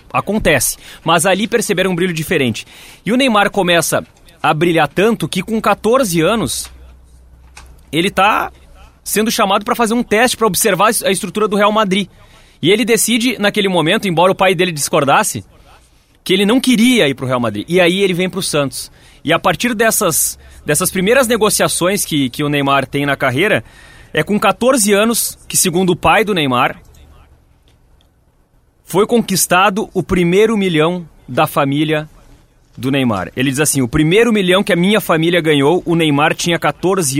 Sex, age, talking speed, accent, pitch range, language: male, 30-49, 175 wpm, Brazilian, 145-205 Hz, Portuguese